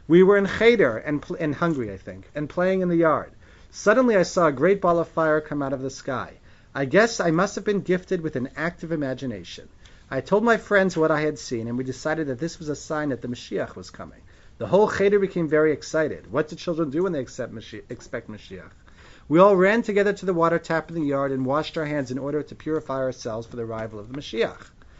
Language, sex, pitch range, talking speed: English, male, 120-165 Hz, 245 wpm